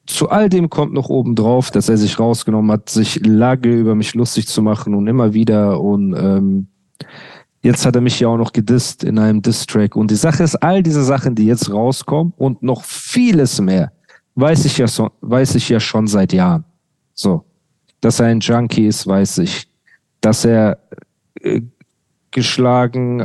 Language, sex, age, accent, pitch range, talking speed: German, male, 40-59, German, 115-150 Hz, 185 wpm